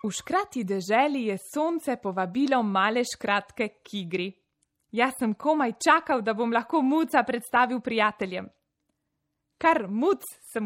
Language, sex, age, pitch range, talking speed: Italian, female, 20-39, 200-270 Hz, 130 wpm